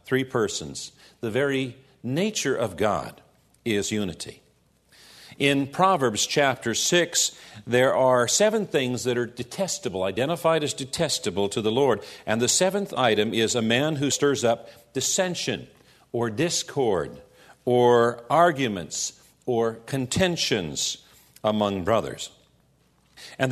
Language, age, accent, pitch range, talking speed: English, 50-69, American, 115-155 Hz, 115 wpm